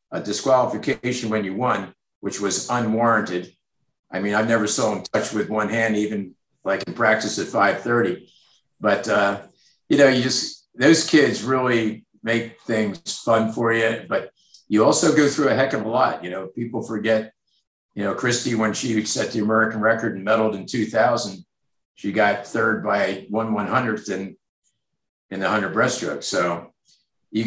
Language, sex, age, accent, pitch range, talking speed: English, male, 50-69, American, 105-120 Hz, 170 wpm